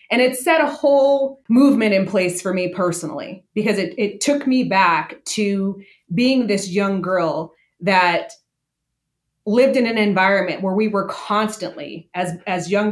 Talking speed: 160 wpm